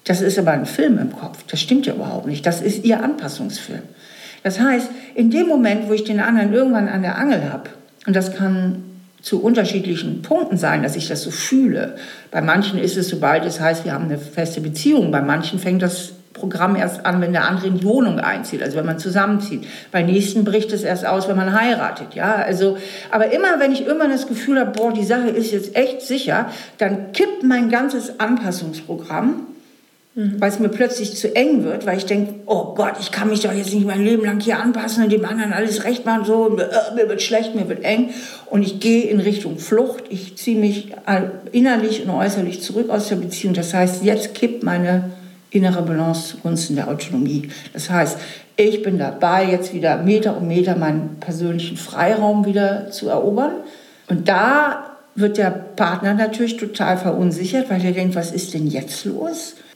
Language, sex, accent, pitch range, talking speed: German, female, German, 185-230 Hz, 200 wpm